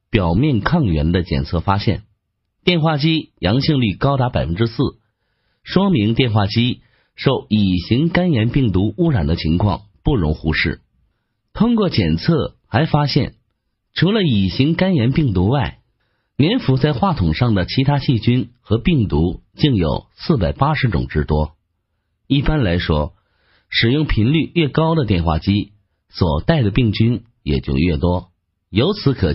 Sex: male